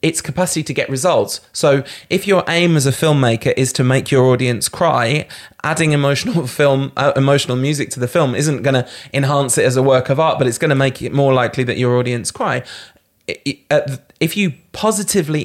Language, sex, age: English, male, 20-39